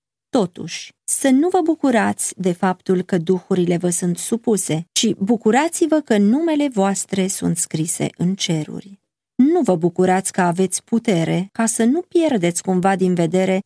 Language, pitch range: Romanian, 175-230 Hz